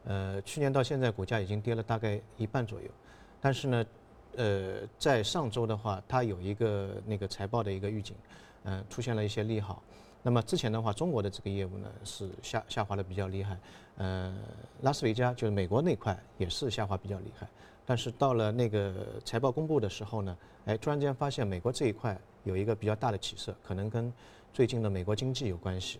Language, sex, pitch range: Chinese, male, 100-115 Hz